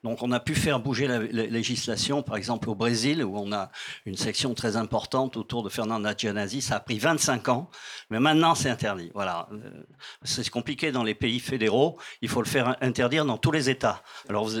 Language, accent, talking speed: French, French, 200 wpm